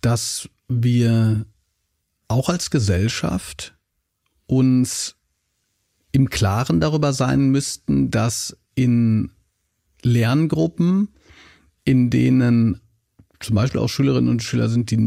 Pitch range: 105-140 Hz